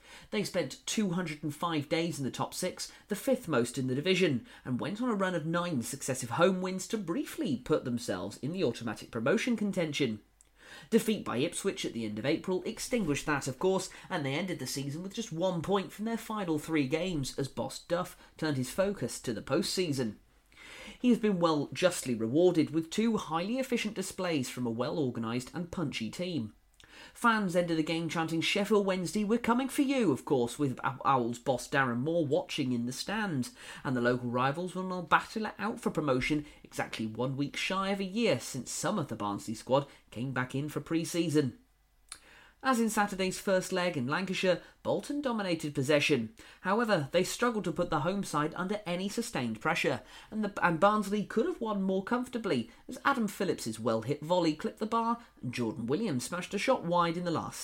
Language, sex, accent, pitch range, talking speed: English, male, British, 140-200 Hz, 190 wpm